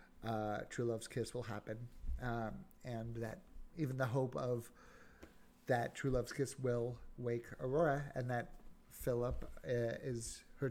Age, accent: 30-49, American